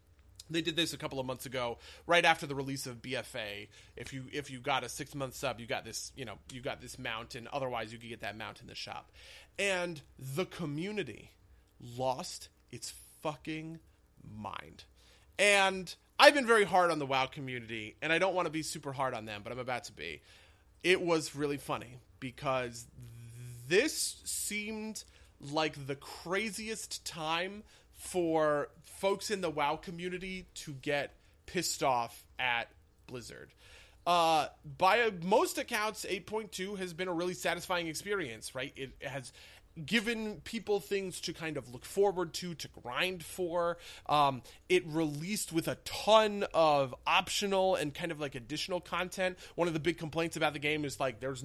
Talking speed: 170 wpm